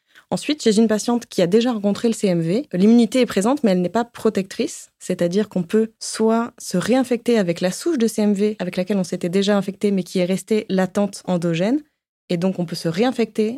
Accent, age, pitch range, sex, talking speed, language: French, 20-39, 175-220 Hz, female, 210 wpm, French